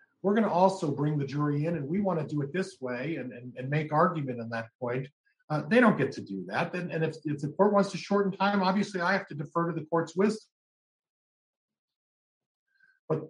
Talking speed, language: 220 wpm, English